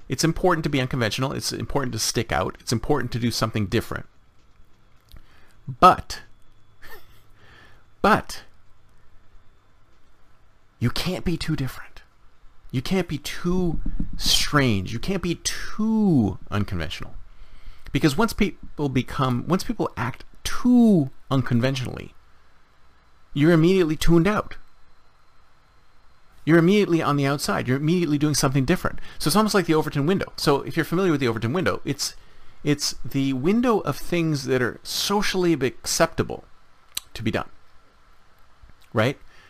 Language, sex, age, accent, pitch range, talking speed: English, male, 40-59, American, 110-170 Hz, 130 wpm